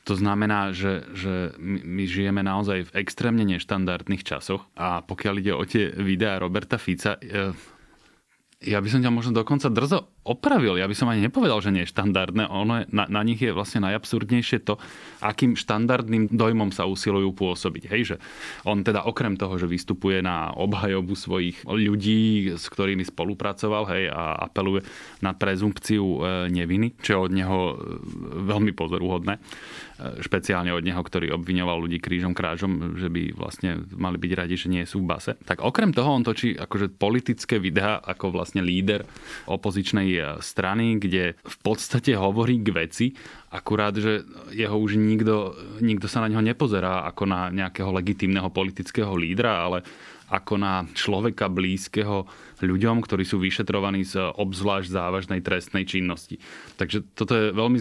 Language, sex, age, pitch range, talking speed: Slovak, male, 20-39, 90-105 Hz, 160 wpm